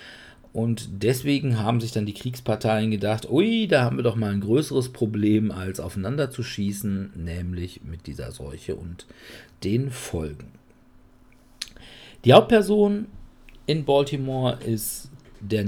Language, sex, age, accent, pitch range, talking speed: German, male, 50-69, German, 100-140 Hz, 130 wpm